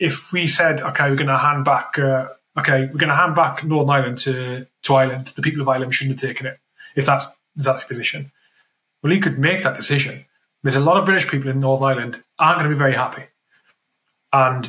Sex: male